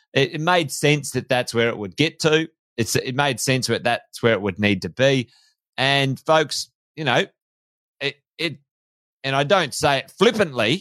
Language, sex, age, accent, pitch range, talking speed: English, male, 30-49, Australian, 115-145 Hz, 190 wpm